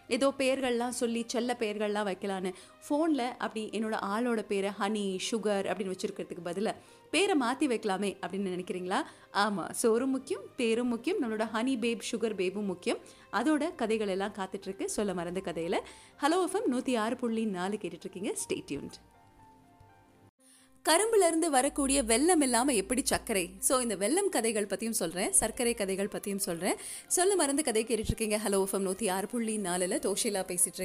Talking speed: 140 wpm